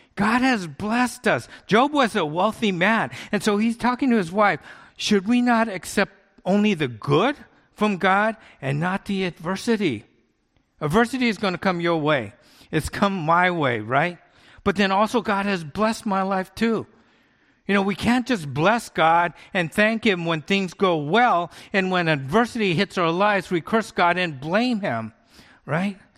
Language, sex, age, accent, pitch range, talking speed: English, male, 50-69, American, 150-210 Hz, 175 wpm